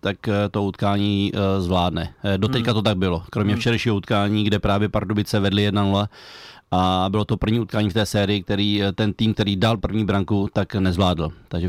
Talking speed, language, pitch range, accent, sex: 175 wpm, Czech, 95-110 Hz, native, male